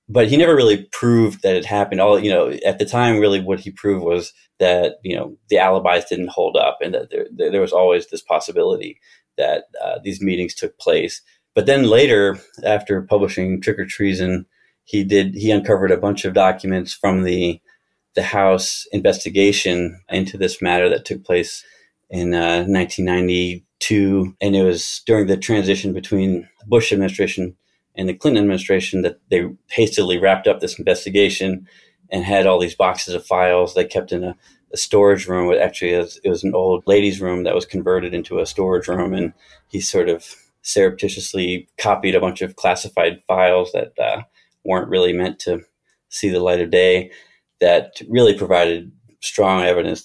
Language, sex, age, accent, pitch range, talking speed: English, male, 30-49, American, 90-105 Hz, 180 wpm